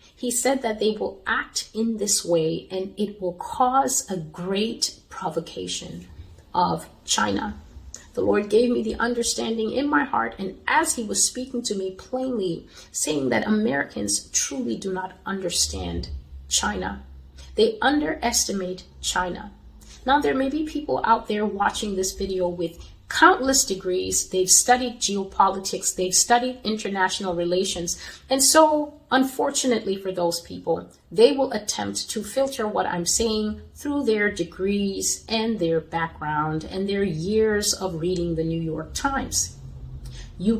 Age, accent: 30-49, American